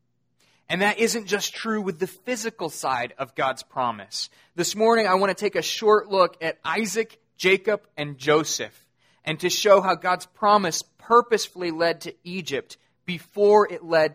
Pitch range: 140-185 Hz